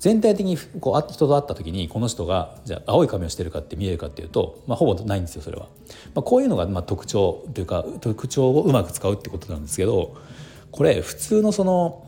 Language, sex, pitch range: Japanese, male, 90-135 Hz